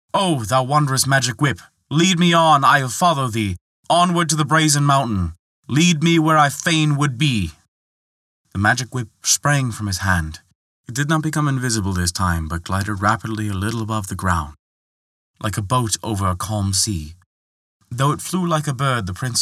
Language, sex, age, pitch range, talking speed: English, male, 20-39, 90-125 Hz, 190 wpm